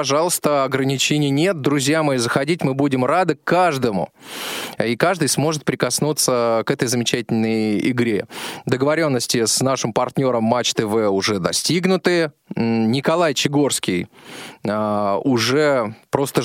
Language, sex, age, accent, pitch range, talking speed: Russian, male, 20-39, native, 110-145 Hz, 110 wpm